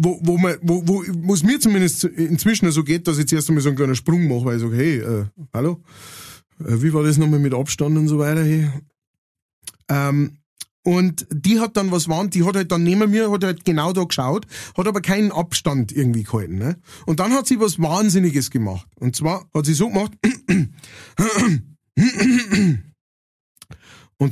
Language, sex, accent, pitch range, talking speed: German, male, German, 140-185 Hz, 180 wpm